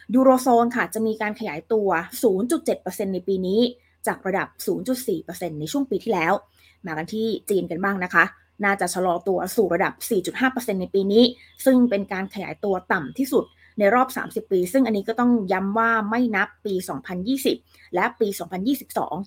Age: 20-39